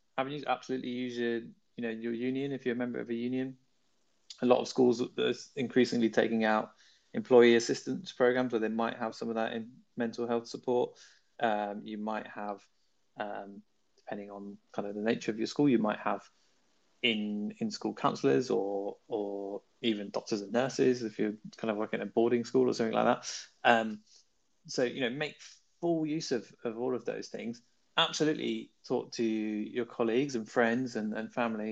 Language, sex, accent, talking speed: English, male, British, 185 wpm